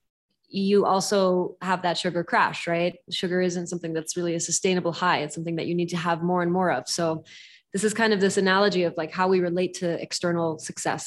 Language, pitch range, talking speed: English, 175-200 Hz, 220 wpm